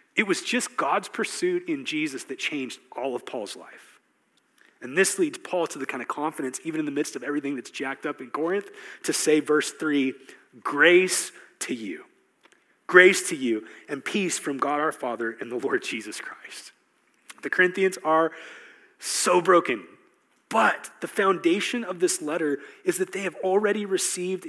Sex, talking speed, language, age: male, 175 wpm, English, 30-49